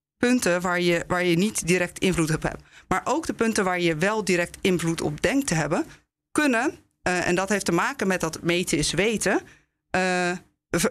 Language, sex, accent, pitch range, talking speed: Dutch, female, Dutch, 160-195 Hz, 200 wpm